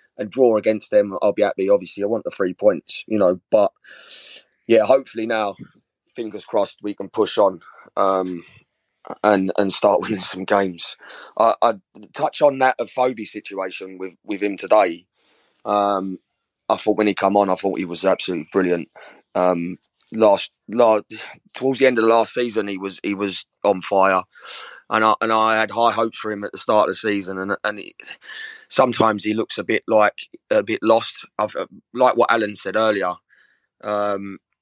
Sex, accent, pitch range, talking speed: male, British, 100-115 Hz, 185 wpm